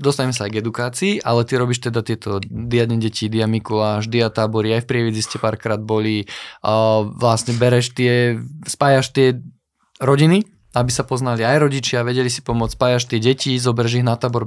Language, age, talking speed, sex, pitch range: Slovak, 20-39, 180 wpm, male, 115-140 Hz